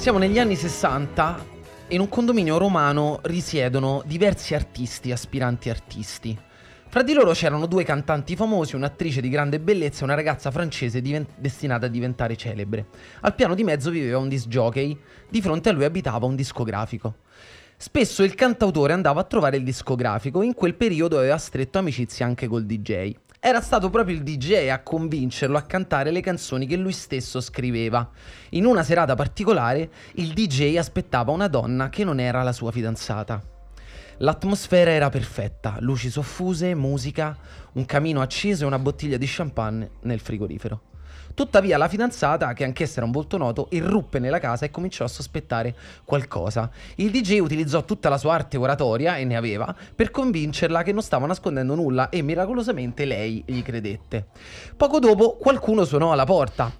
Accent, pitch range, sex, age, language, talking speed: native, 120-175 Hz, male, 20-39, Italian, 165 wpm